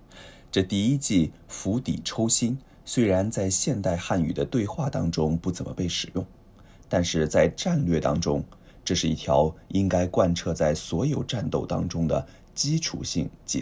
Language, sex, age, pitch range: Japanese, male, 20-39, 85-110 Hz